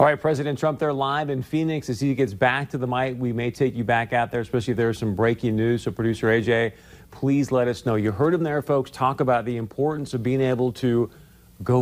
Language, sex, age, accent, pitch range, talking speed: English, male, 40-59, American, 120-155 Hz, 250 wpm